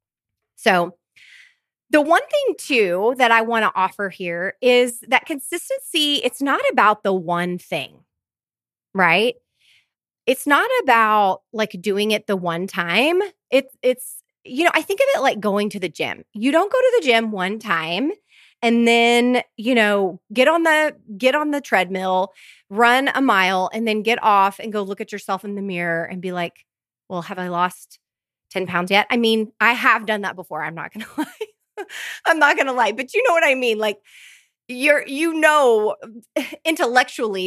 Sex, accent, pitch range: female, American, 185-265 Hz